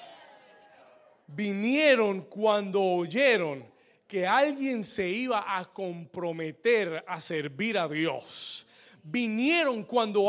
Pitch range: 155-220 Hz